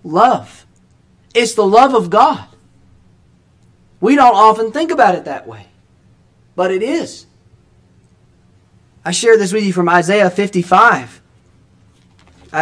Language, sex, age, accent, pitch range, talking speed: English, male, 30-49, American, 150-220 Hz, 120 wpm